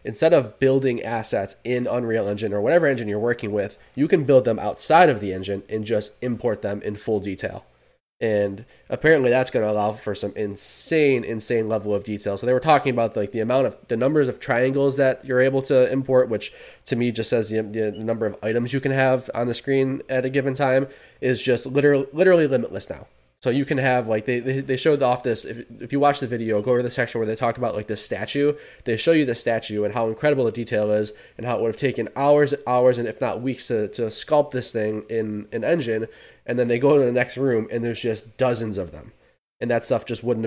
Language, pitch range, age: English, 110-130 Hz, 20-39